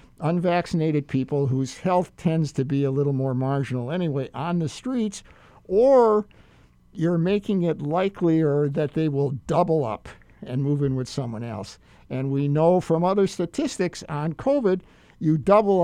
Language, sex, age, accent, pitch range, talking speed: English, male, 60-79, American, 130-170 Hz, 155 wpm